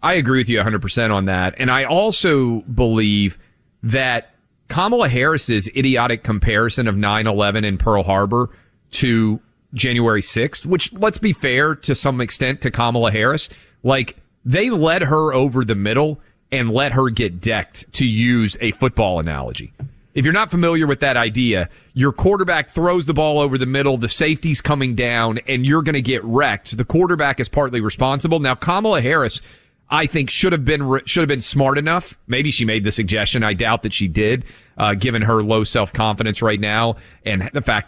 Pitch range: 110-145 Hz